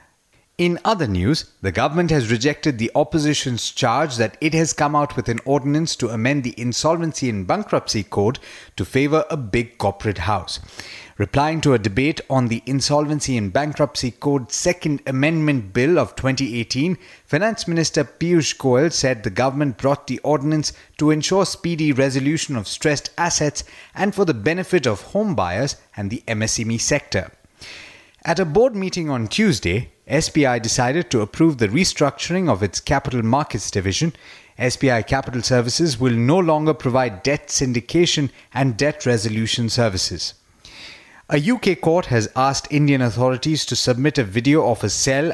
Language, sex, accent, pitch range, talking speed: English, male, Indian, 120-155 Hz, 160 wpm